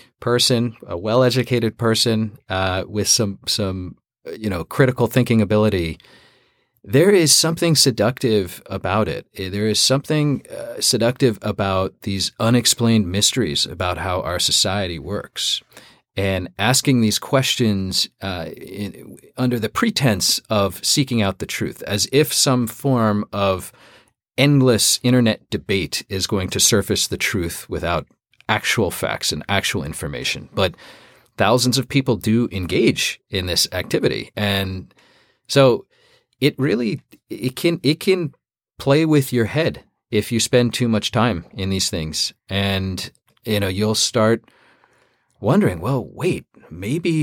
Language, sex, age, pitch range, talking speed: English, male, 40-59, 100-125 Hz, 135 wpm